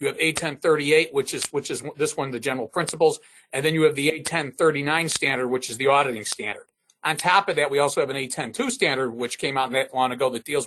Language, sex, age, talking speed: English, male, 40-59, 235 wpm